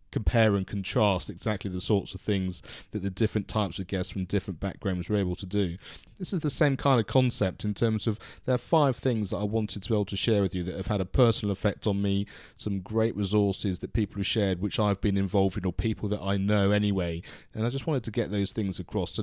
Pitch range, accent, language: 95-110 Hz, British, English